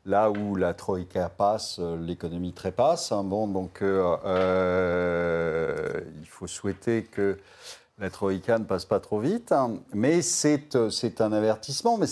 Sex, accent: male, French